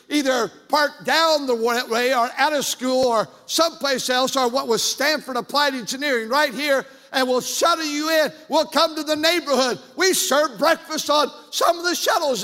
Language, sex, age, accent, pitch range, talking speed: English, male, 60-79, American, 235-285 Hz, 185 wpm